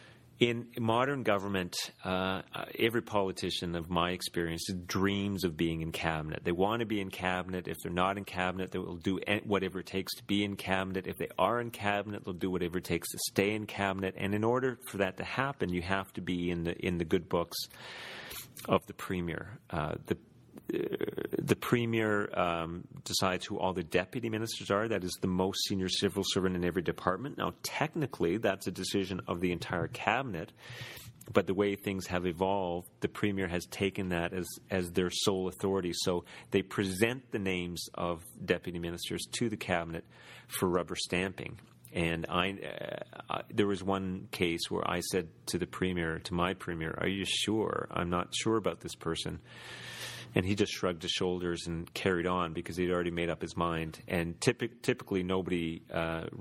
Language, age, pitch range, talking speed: English, 40-59, 90-105 Hz, 190 wpm